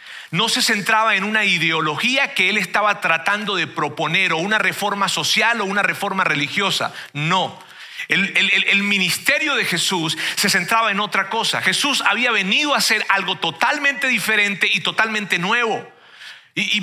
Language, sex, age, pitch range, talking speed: Spanish, male, 40-59, 180-230 Hz, 155 wpm